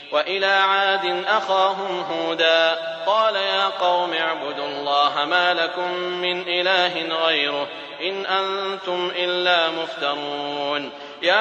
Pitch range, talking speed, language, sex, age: 160-195 Hz, 100 wpm, English, male, 30-49